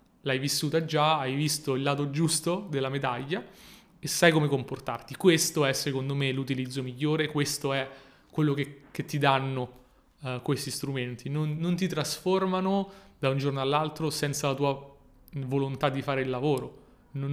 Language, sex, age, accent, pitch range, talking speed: Italian, male, 30-49, native, 135-155 Hz, 165 wpm